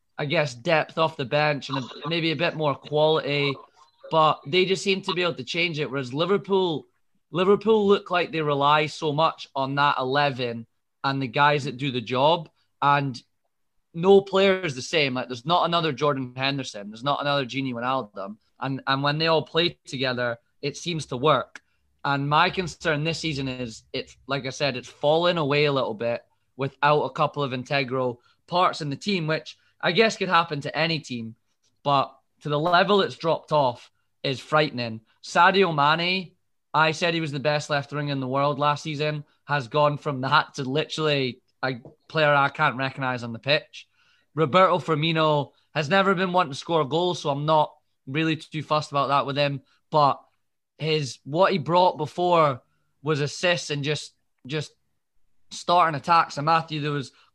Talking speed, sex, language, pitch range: 190 wpm, male, English, 135-160 Hz